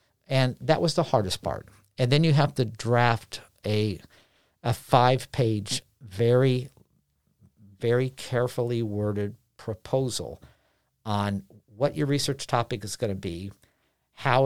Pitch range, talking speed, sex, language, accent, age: 105-130 Hz, 115 wpm, male, English, American, 50-69